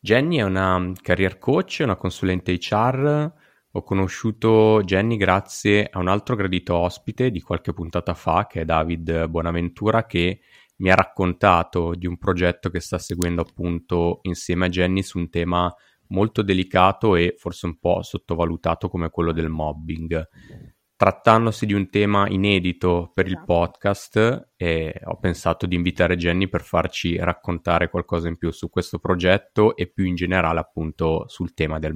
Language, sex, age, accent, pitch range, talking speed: Italian, male, 20-39, native, 85-100 Hz, 160 wpm